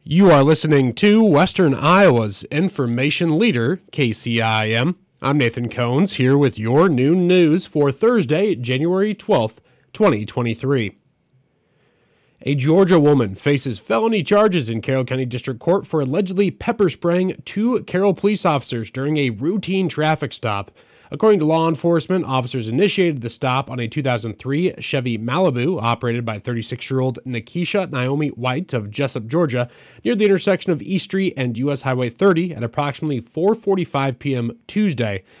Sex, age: male, 30-49